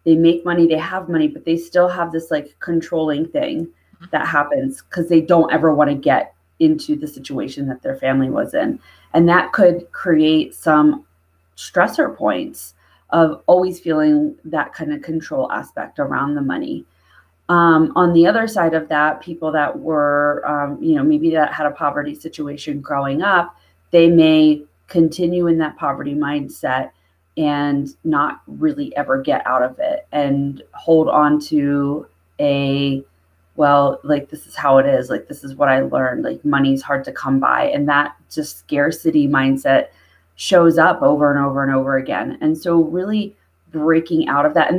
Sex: female